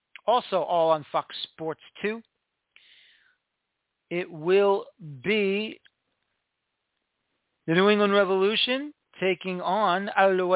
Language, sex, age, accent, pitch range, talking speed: English, male, 40-59, American, 155-200 Hz, 90 wpm